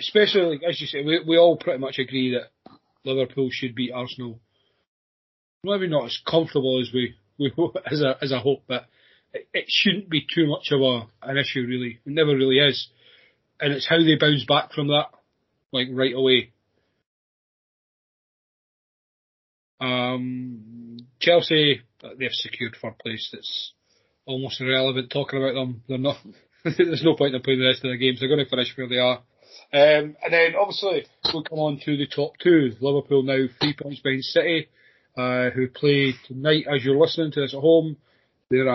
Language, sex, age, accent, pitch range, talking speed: English, male, 30-49, British, 130-160 Hz, 180 wpm